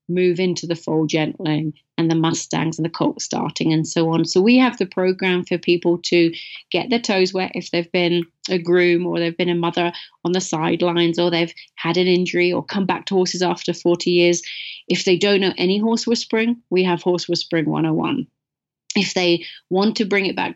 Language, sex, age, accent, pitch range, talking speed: English, female, 30-49, British, 175-205 Hz, 210 wpm